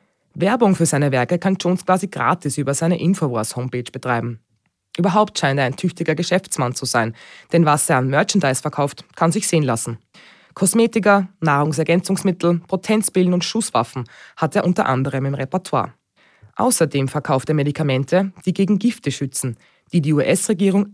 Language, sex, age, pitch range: German, female, 20-39, 135-185 Hz